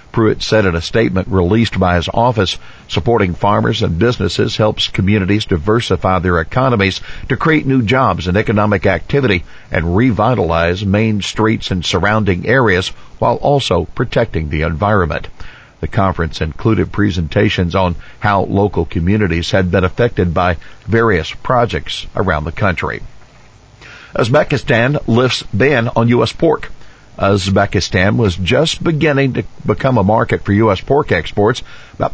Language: English